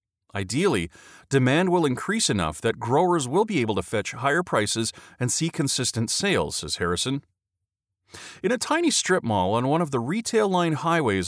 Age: 30-49